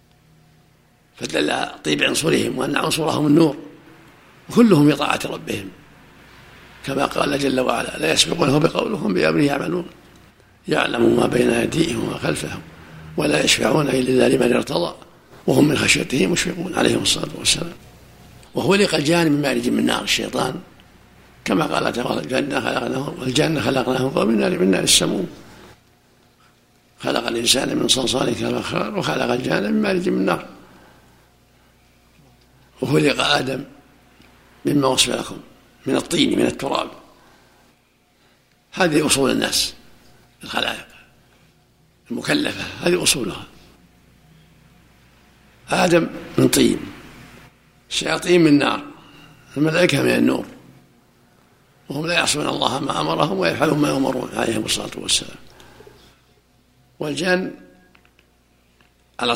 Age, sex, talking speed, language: 60-79, male, 105 wpm, Arabic